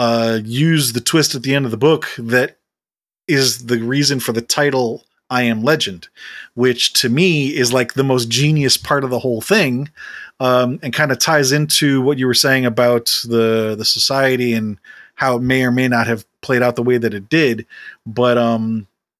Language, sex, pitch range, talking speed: English, male, 115-135 Hz, 200 wpm